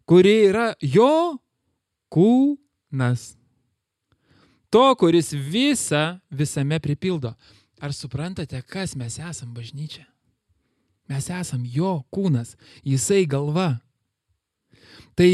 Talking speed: 85 wpm